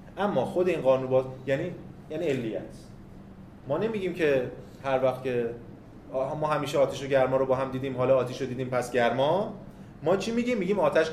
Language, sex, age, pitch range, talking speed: Persian, male, 30-49, 130-180 Hz, 190 wpm